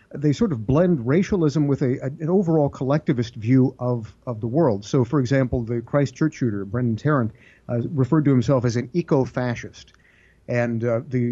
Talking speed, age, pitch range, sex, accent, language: 180 wpm, 50-69, 115-140 Hz, male, American, English